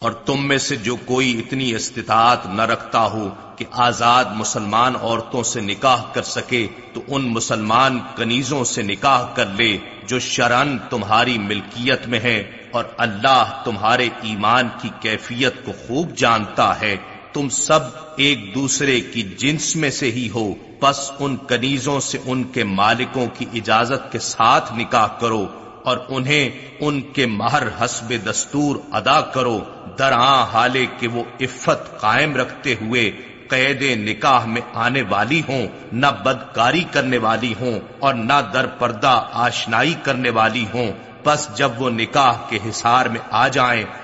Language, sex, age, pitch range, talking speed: Urdu, male, 40-59, 115-140 Hz, 155 wpm